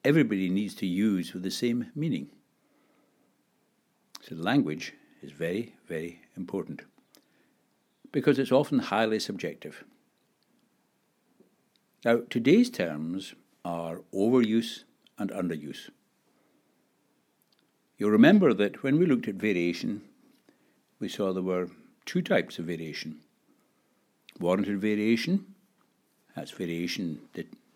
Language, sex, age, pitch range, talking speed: English, male, 60-79, 85-130 Hz, 100 wpm